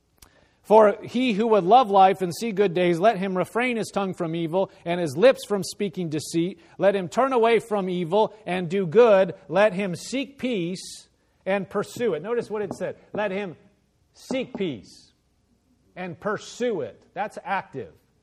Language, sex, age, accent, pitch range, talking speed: English, male, 40-59, American, 180-235 Hz, 170 wpm